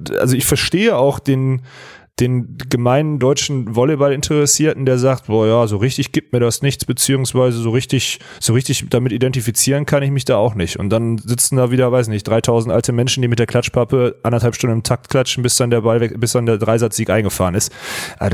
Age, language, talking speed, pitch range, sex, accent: 30-49, German, 205 wpm, 110-135 Hz, male, German